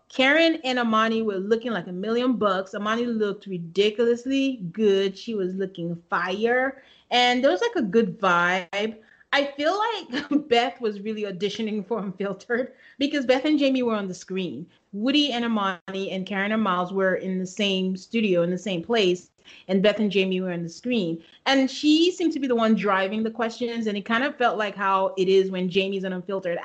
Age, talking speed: 30-49, 200 wpm